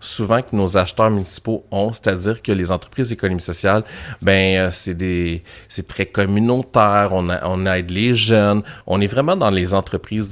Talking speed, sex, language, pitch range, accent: 180 wpm, male, French, 95-115 Hz, Canadian